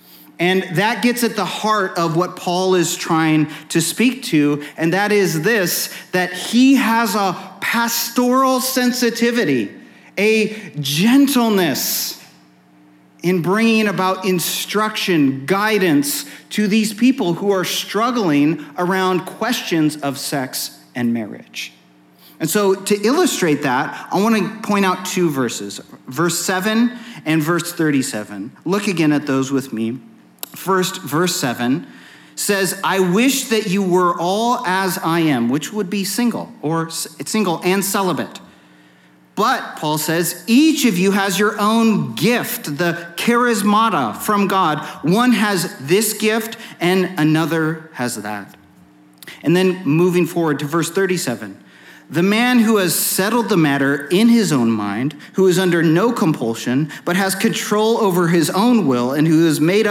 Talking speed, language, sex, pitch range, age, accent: 145 wpm, English, male, 150-215 Hz, 40-59, American